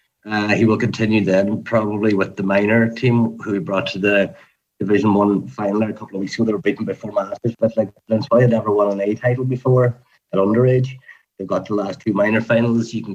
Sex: male